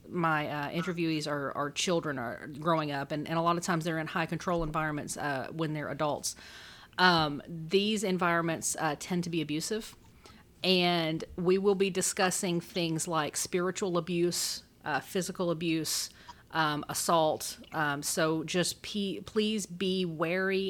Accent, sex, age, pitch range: American, female, 40-59, 155-190 Hz